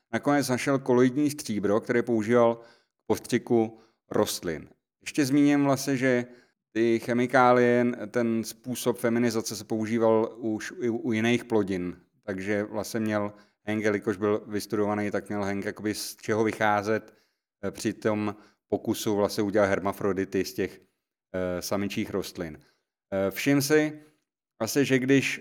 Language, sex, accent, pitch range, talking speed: Czech, male, native, 110-130 Hz, 130 wpm